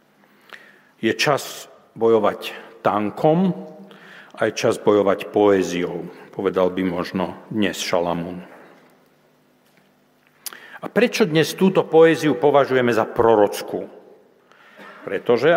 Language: Slovak